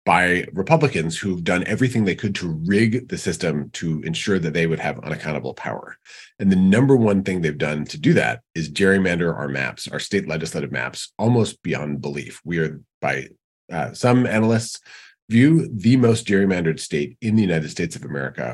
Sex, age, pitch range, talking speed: male, 30-49, 85-120 Hz, 185 wpm